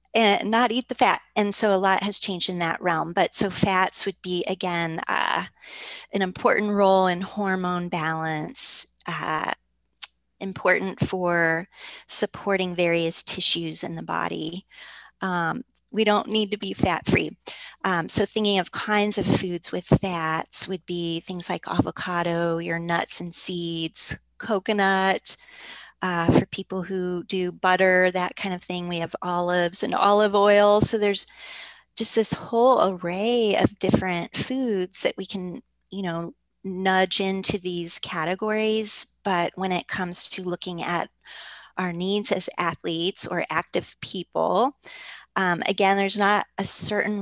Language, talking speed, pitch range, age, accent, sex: English, 150 wpm, 175-200 Hz, 30-49, American, female